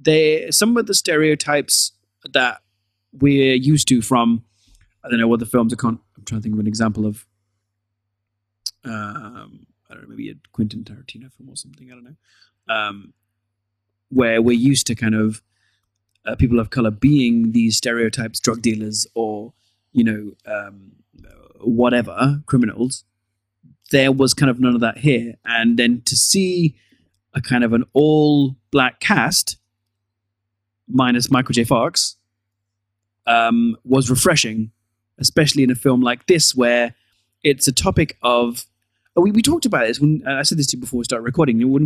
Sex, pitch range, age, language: male, 110-130 Hz, 30-49, English